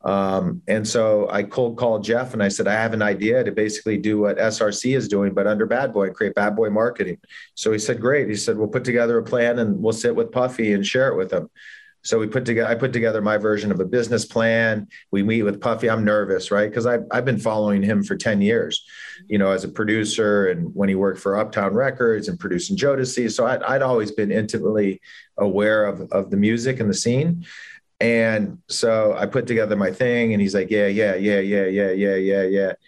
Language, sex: English, male